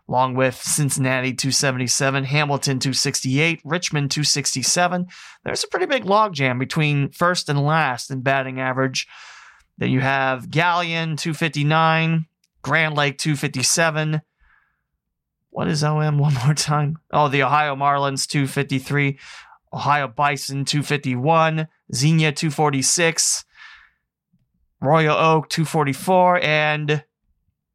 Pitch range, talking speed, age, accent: 135-160 Hz, 105 wpm, 30-49, American